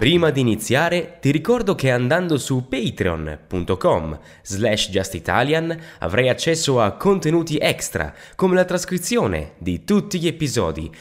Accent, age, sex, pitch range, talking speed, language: native, 20-39, male, 95-155 Hz, 125 wpm, Italian